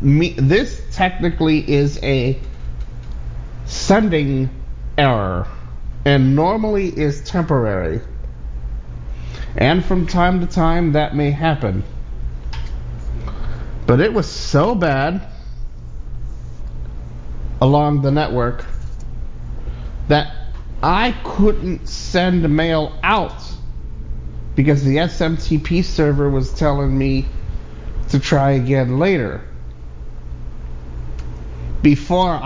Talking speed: 80 wpm